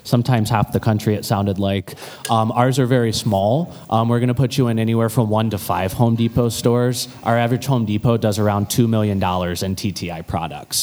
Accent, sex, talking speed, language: American, male, 205 wpm, English